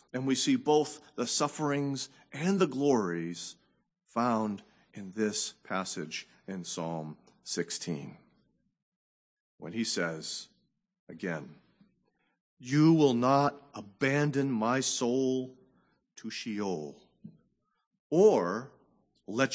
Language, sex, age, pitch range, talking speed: English, male, 40-59, 125-180 Hz, 90 wpm